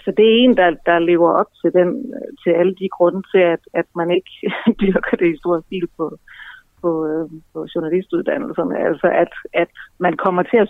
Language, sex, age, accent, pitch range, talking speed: Danish, female, 30-49, native, 170-190 Hz, 200 wpm